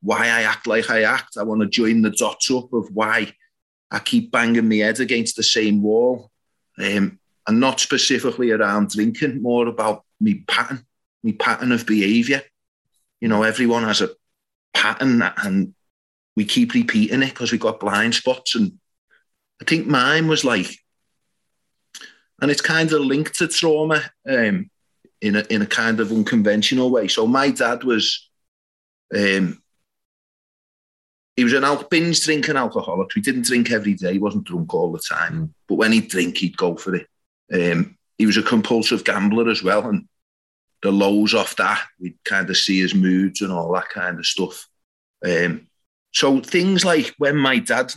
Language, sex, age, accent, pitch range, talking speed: English, male, 30-49, British, 105-150 Hz, 170 wpm